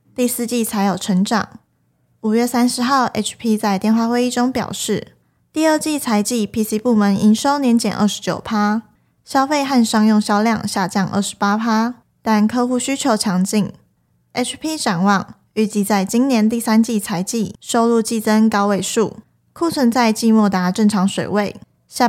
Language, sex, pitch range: Chinese, female, 205-245 Hz